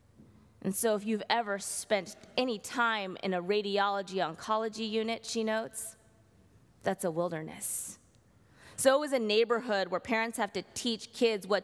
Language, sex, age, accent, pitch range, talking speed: English, female, 20-39, American, 150-220 Hz, 145 wpm